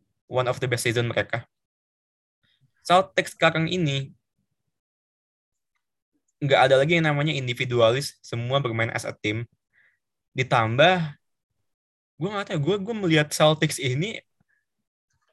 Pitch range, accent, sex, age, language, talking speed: 115-150 Hz, native, male, 20-39, Indonesian, 110 wpm